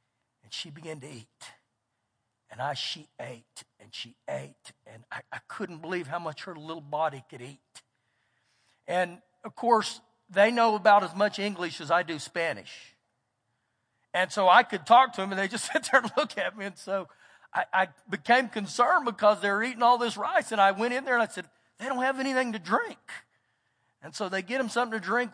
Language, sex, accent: English, male, American